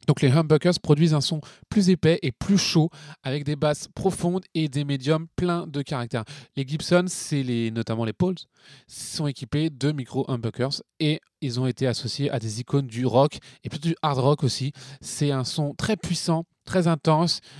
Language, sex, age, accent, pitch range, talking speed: French, male, 20-39, French, 125-160 Hz, 190 wpm